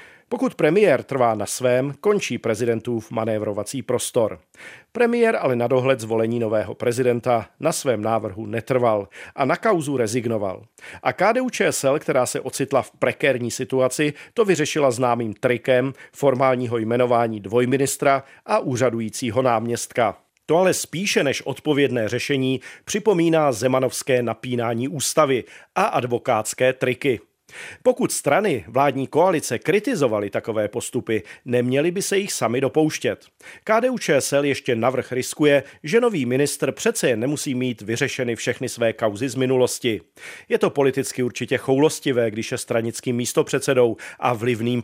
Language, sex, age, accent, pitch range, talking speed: Czech, male, 40-59, native, 120-140 Hz, 130 wpm